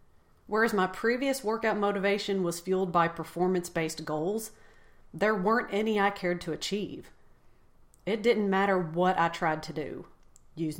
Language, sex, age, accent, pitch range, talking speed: English, female, 40-59, American, 170-210 Hz, 145 wpm